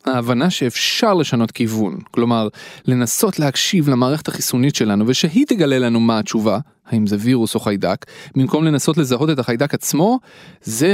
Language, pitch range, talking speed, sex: Hebrew, 125-195 Hz, 150 wpm, male